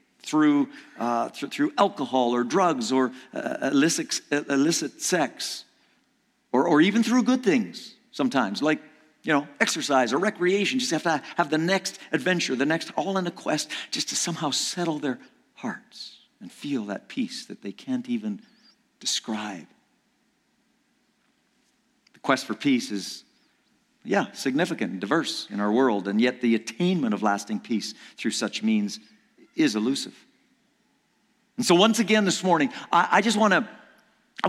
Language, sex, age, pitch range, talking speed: English, male, 50-69, 160-245 Hz, 160 wpm